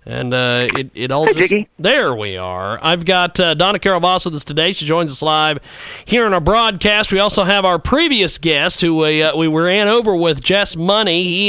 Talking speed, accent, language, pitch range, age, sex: 220 wpm, American, English, 150-200 Hz, 40-59, male